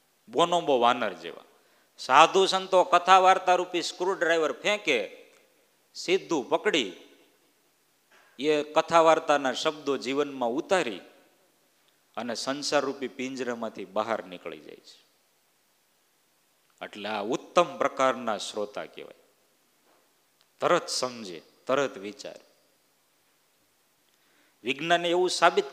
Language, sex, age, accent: Gujarati, male, 50-69, native